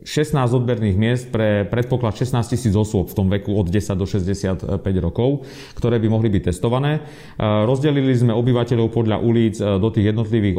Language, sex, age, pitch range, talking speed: Slovak, male, 40-59, 100-120 Hz, 165 wpm